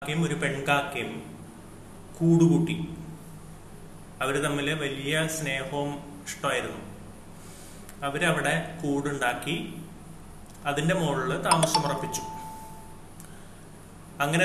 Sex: male